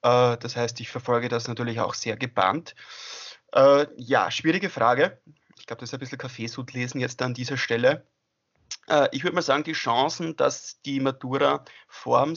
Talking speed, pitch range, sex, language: 160 wpm, 120-135 Hz, male, German